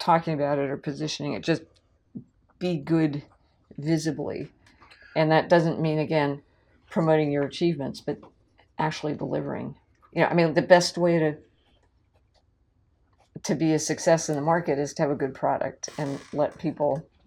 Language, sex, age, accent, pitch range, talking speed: English, female, 50-69, American, 140-165 Hz, 155 wpm